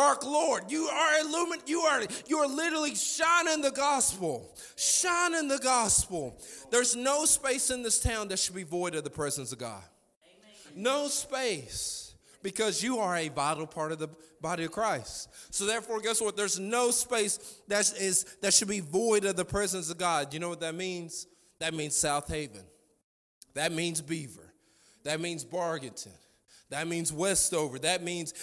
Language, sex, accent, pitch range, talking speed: English, male, American, 185-255 Hz, 175 wpm